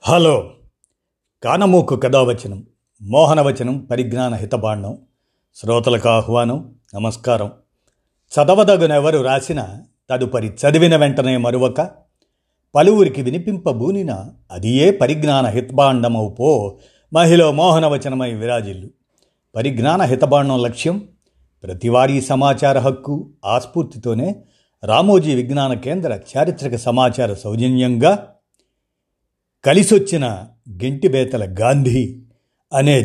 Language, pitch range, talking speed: Telugu, 120-155 Hz, 75 wpm